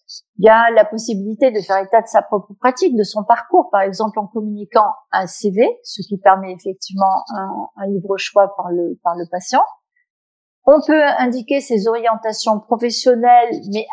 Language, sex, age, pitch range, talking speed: French, female, 50-69, 195-240 Hz, 175 wpm